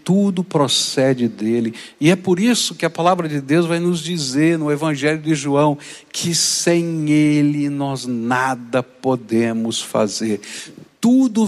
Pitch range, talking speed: 160-210 Hz, 140 wpm